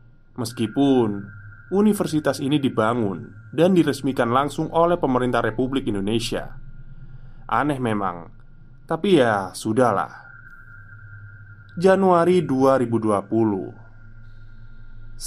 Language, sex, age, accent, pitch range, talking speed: Indonesian, male, 20-39, native, 110-150 Hz, 70 wpm